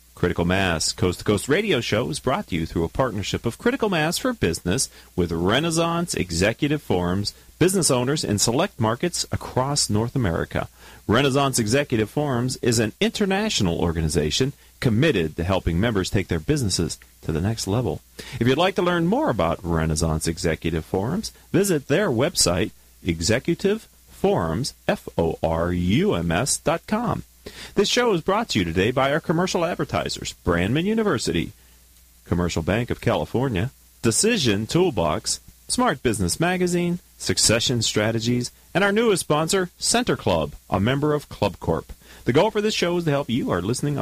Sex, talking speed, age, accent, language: male, 145 wpm, 40-59, American, English